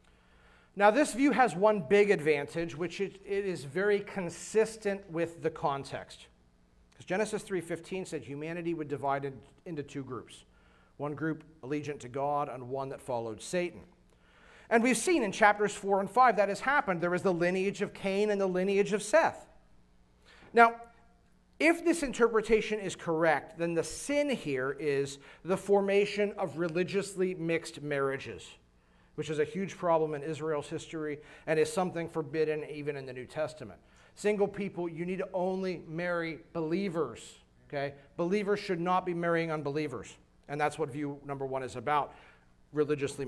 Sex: male